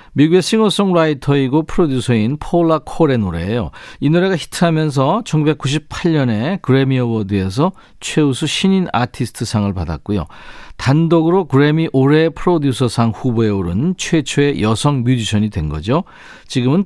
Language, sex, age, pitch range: Korean, male, 40-59, 110-160 Hz